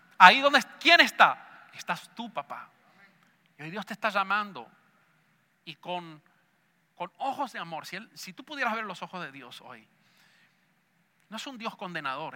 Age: 40-59